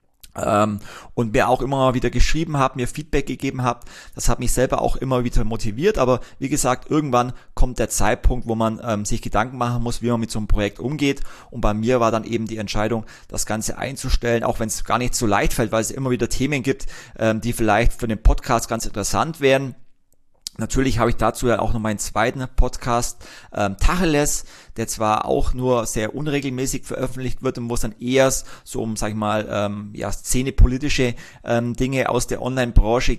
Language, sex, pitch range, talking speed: German, male, 110-130 Hz, 200 wpm